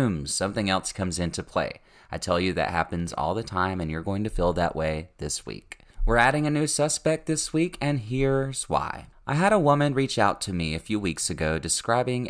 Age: 30-49